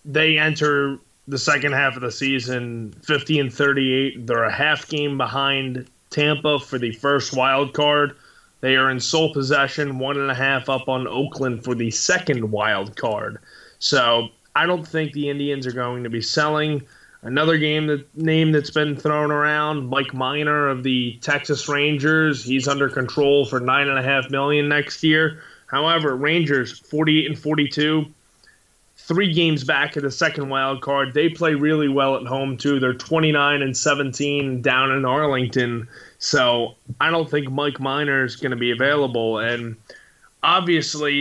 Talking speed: 165 wpm